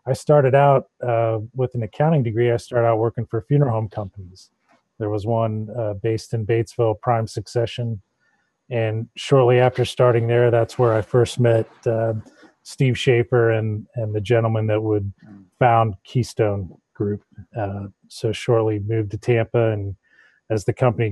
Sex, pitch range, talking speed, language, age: male, 105-120 Hz, 160 wpm, English, 30-49